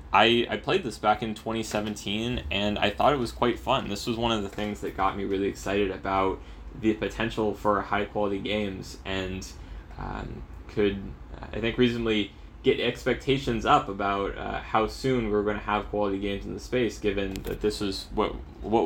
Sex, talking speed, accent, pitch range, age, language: male, 195 wpm, American, 95-110 Hz, 20-39, English